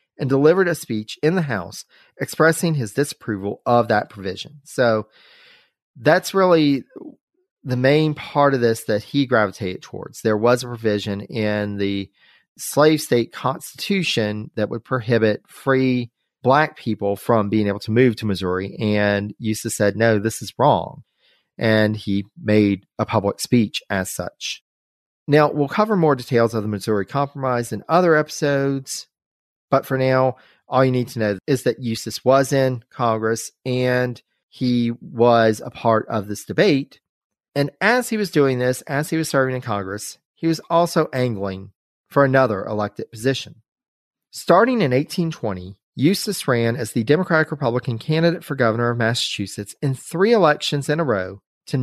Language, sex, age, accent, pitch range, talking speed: English, male, 40-59, American, 110-145 Hz, 155 wpm